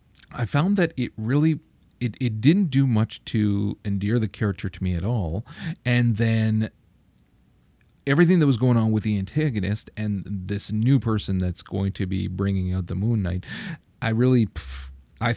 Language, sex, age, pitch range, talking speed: English, male, 40-59, 100-125 Hz, 170 wpm